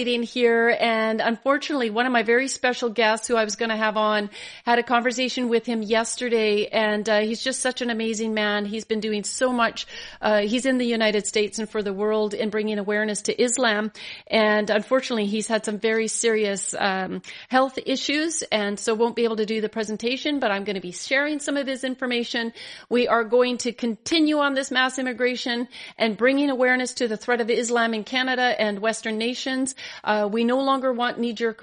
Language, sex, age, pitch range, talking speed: English, female, 40-59, 215-255 Hz, 205 wpm